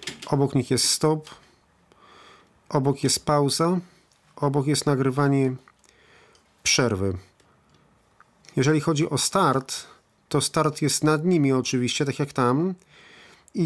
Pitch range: 130-155 Hz